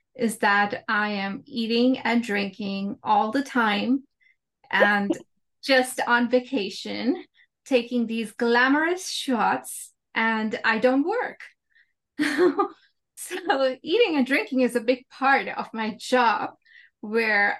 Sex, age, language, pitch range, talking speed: female, 20-39, English, 210-270 Hz, 115 wpm